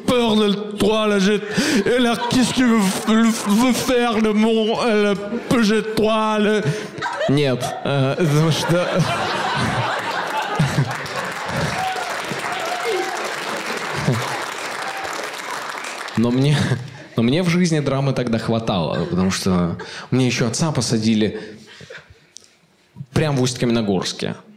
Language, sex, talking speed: Russian, male, 50 wpm